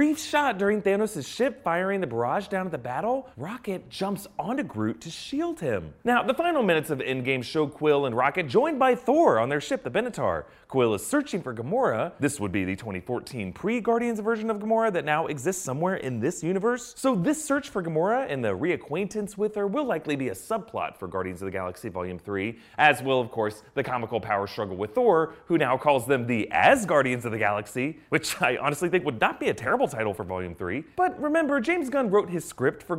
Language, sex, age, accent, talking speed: English, male, 30-49, American, 220 wpm